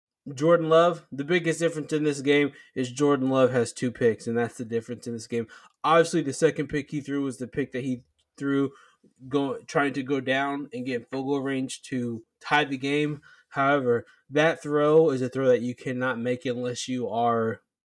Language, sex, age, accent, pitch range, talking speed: English, male, 20-39, American, 125-150 Hz, 200 wpm